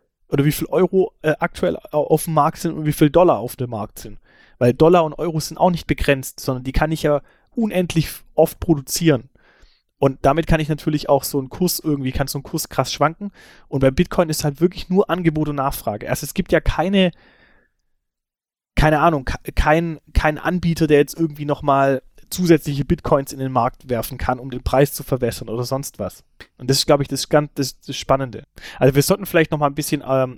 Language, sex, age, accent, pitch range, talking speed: German, male, 30-49, German, 130-160 Hz, 215 wpm